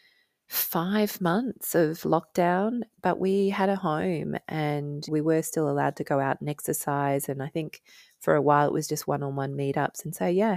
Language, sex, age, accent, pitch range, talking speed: English, female, 30-49, Australian, 140-175 Hz, 185 wpm